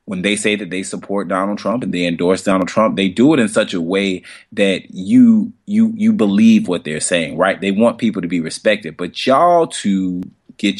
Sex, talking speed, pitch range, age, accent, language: male, 215 wpm, 100-165 Hz, 20-39, American, English